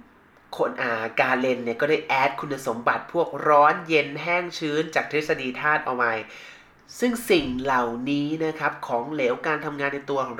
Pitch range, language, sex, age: 125-160 Hz, Thai, male, 20-39